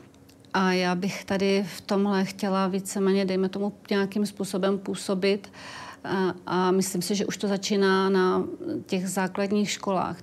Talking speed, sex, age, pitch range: 145 wpm, female, 40-59, 180-195 Hz